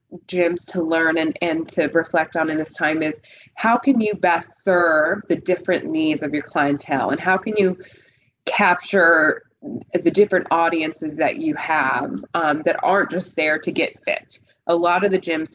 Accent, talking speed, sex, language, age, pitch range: American, 180 wpm, female, English, 20-39, 155-180 Hz